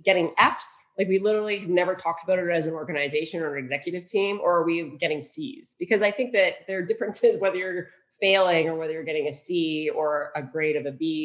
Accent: American